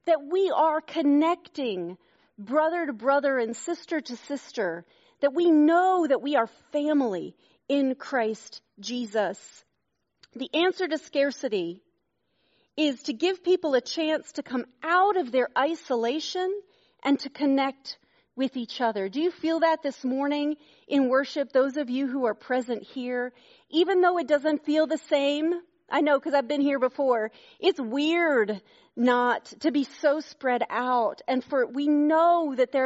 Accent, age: American, 40-59